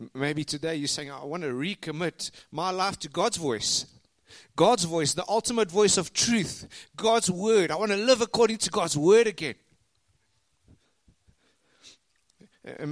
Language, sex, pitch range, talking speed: English, male, 125-175 Hz, 150 wpm